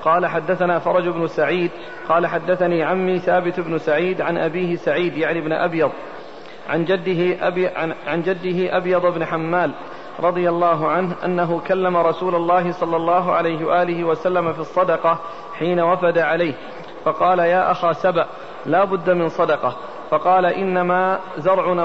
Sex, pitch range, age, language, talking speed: male, 170-185 Hz, 40-59, Arabic, 145 wpm